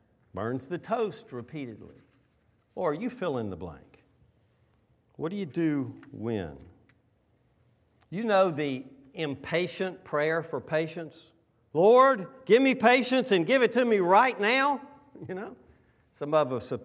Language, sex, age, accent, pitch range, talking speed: English, male, 50-69, American, 120-180 Hz, 140 wpm